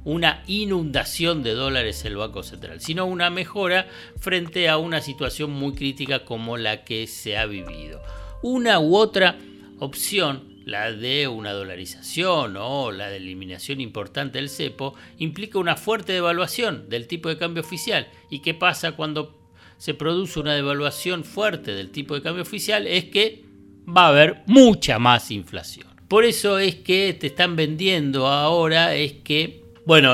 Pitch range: 120-170 Hz